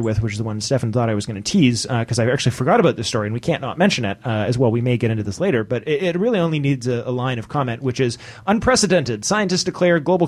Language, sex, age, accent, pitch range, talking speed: English, male, 30-49, American, 125-180 Hz, 300 wpm